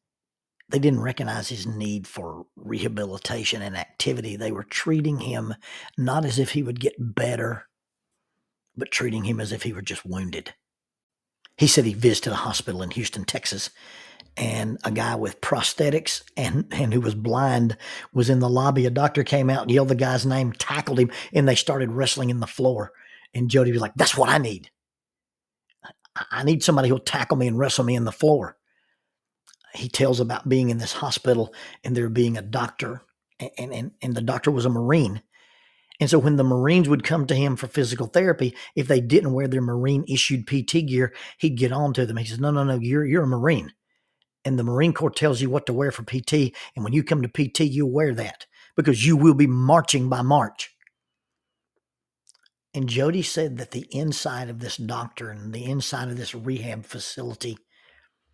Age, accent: 50-69, American